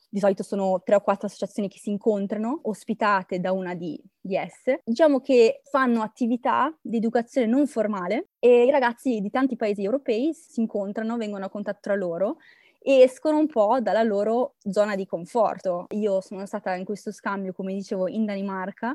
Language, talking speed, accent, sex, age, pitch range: Italian, 180 wpm, native, female, 20-39, 195-255 Hz